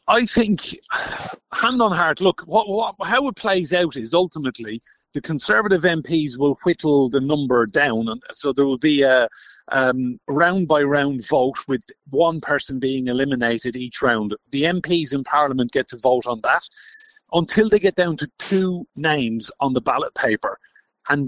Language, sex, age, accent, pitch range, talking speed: English, male, 30-49, British, 125-160 Hz, 170 wpm